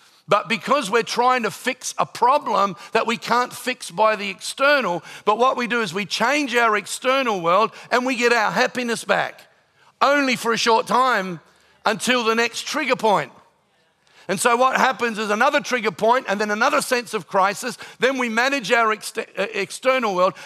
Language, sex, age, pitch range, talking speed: English, male, 50-69, 195-240 Hz, 180 wpm